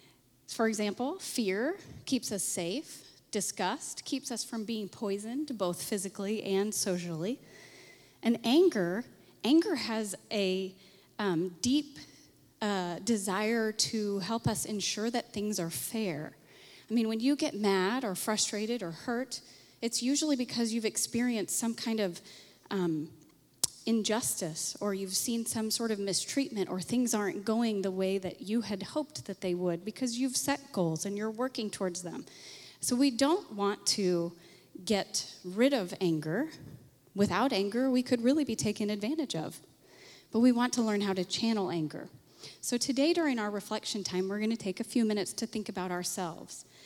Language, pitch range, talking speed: English, 190-240 Hz, 160 wpm